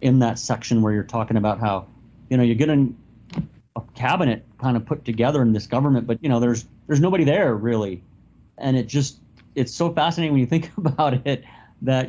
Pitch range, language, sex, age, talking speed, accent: 115-140 Hz, English, male, 30-49, 205 wpm, American